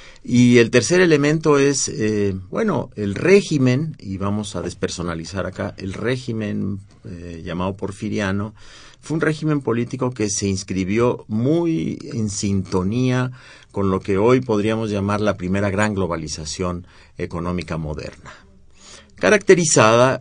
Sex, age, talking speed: male, 50-69, 125 wpm